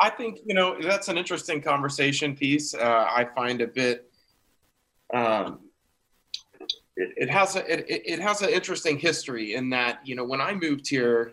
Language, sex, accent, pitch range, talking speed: English, male, American, 120-145 Hz, 175 wpm